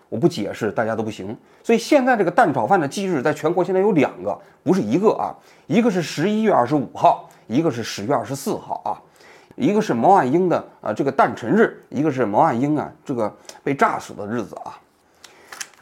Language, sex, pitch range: Chinese, male, 125-205 Hz